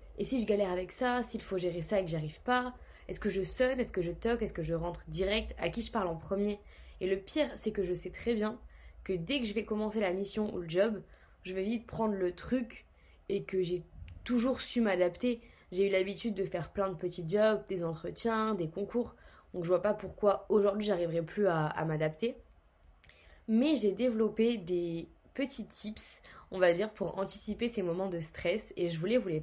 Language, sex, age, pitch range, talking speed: French, female, 20-39, 180-220 Hz, 225 wpm